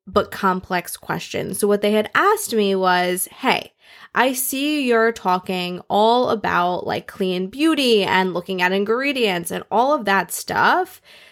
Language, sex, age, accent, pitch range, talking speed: English, female, 20-39, American, 190-235 Hz, 155 wpm